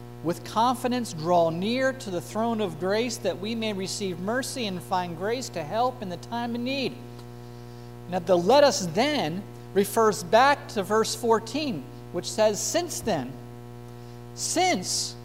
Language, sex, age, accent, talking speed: English, male, 50-69, American, 155 wpm